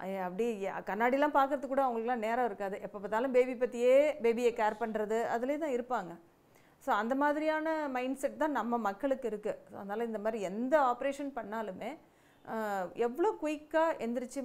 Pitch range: 205-250 Hz